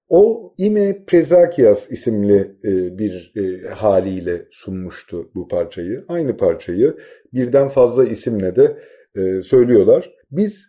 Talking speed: 95 wpm